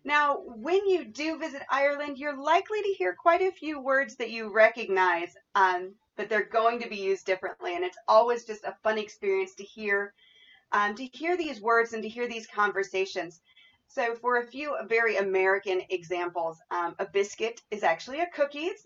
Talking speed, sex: 190 wpm, female